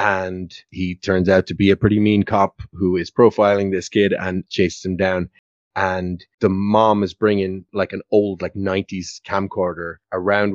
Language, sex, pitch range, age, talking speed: English, male, 95-105 Hz, 30-49, 175 wpm